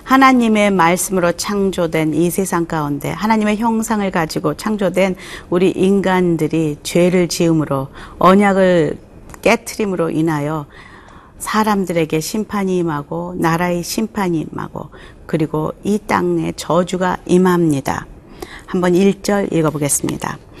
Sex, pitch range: female, 165-195 Hz